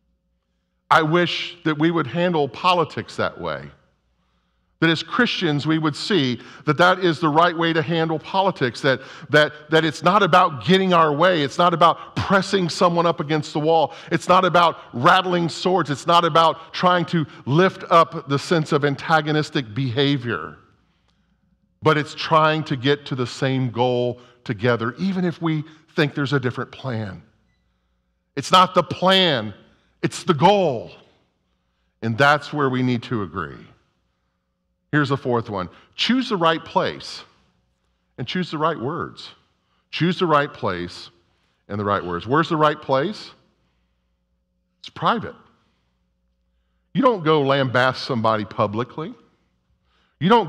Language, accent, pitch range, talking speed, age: English, American, 120-170 Hz, 150 wpm, 50-69